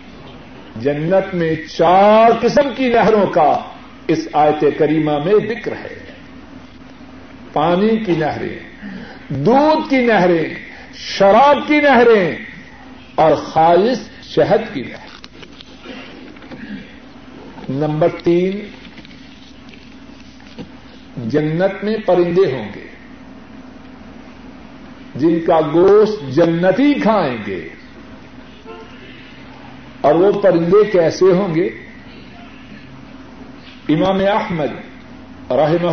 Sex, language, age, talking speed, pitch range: male, Urdu, 50-69, 80 wpm, 165-255 Hz